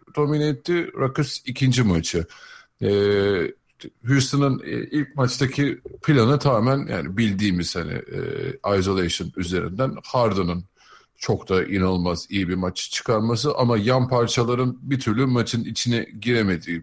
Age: 50-69